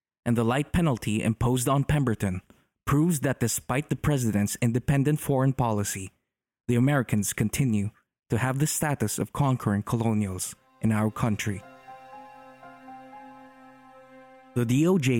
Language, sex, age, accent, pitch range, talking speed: English, male, 20-39, Filipino, 110-155 Hz, 120 wpm